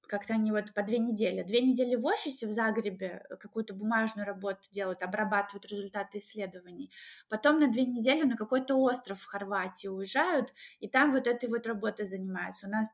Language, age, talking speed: Russian, 20-39, 175 wpm